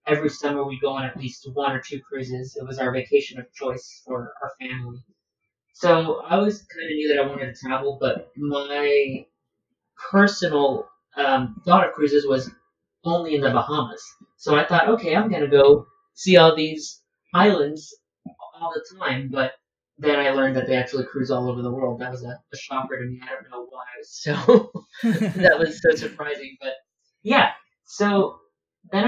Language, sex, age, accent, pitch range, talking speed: English, male, 30-49, American, 130-160 Hz, 185 wpm